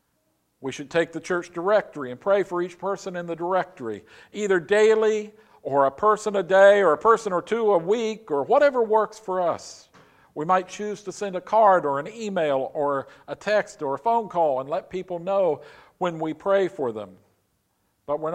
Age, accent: 50-69, American